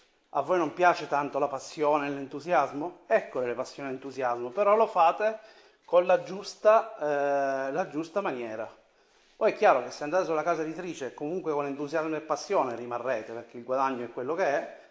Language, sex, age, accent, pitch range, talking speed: Italian, male, 30-49, native, 135-195 Hz, 180 wpm